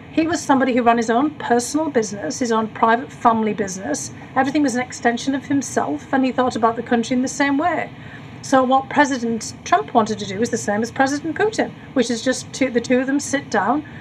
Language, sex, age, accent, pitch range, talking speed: English, female, 40-59, British, 220-270 Hz, 225 wpm